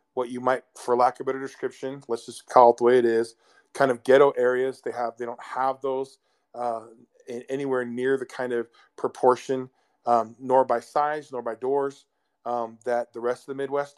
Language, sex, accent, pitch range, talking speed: English, male, American, 120-135 Hz, 210 wpm